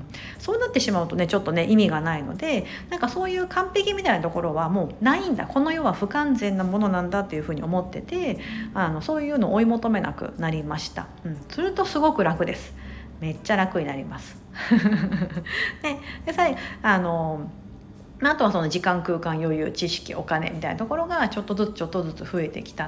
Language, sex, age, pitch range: Japanese, female, 50-69, 175-265 Hz